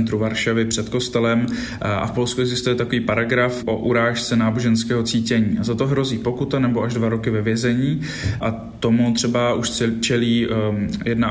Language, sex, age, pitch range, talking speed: Slovak, male, 20-39, 115-125 Hz, 155 wpm